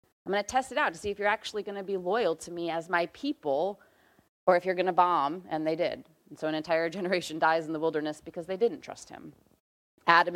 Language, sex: English, female